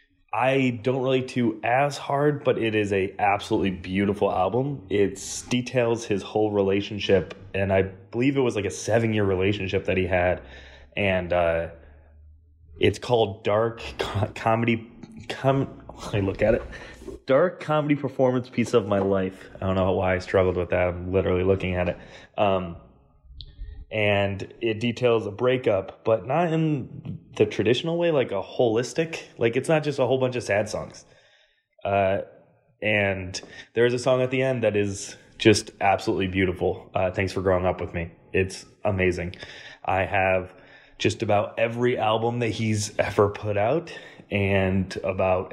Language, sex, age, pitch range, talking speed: English, male, 20-39, 95-120 Hz, 160 wpm